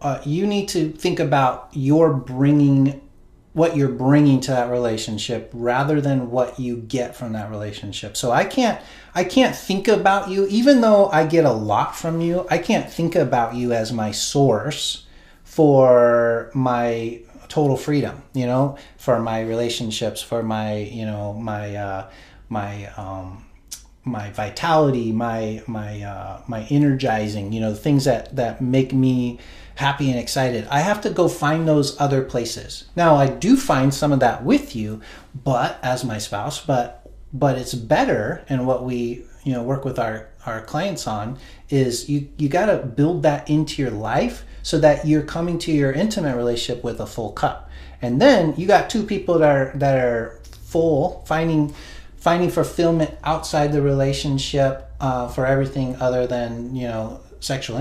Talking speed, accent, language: 170 wpm, American, English